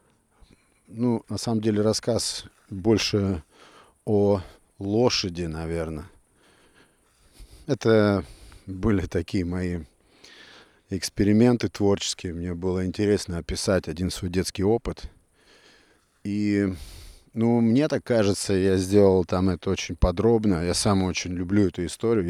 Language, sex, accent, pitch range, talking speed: Russian, male, native, 90-100 Hz, 110 wpm